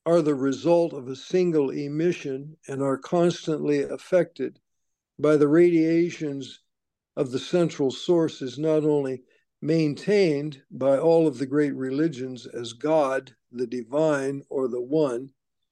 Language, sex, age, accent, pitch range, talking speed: English, male, 60-79, American, 135-165 Hz, 130 wpm